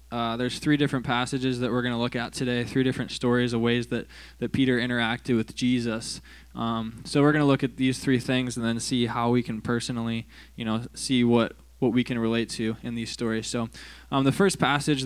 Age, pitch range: 20-39, 115-130 Hz